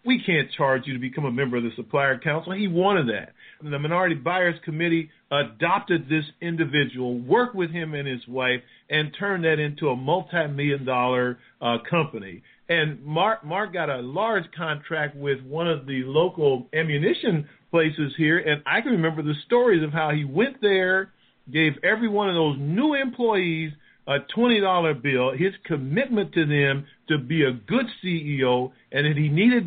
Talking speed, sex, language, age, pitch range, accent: 175 wpm, male, English, 50-69, 145-195 Hz, American